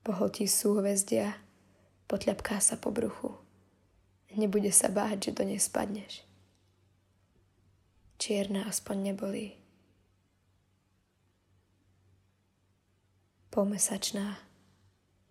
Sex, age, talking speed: female, 20-39, 65 wpm